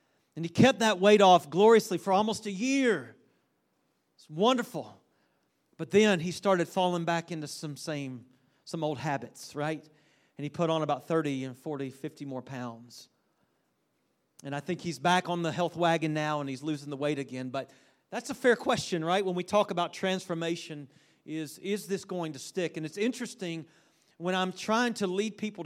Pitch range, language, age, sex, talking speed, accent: 150-200 Hz, English, 40-59, male, 185 wpm, American